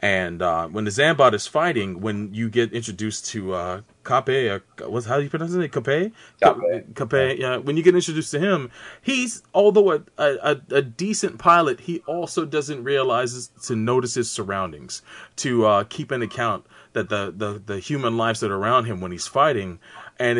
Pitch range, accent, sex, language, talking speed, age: 105-145 Hz, American, male, English, 190 wpm, 30-49